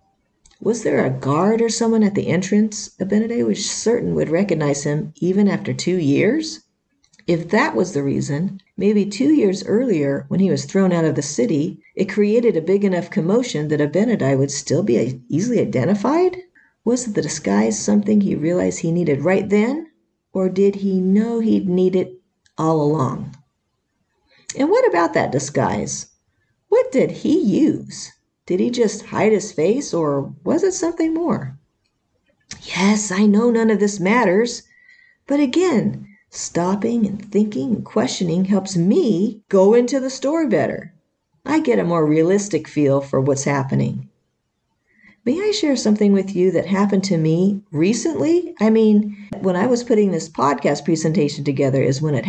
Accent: American